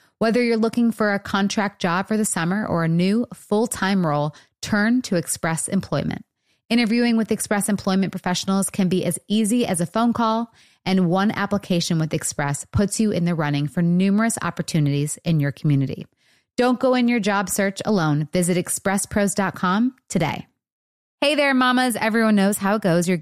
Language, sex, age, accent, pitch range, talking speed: English, female, 30-49, American, 155-205 Hz, 175 wpm